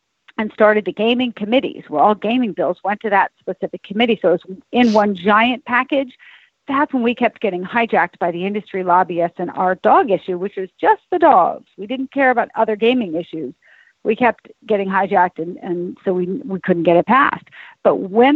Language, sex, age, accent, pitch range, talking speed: English, female, 50-69, American, 190-245 Hz, 200 wpm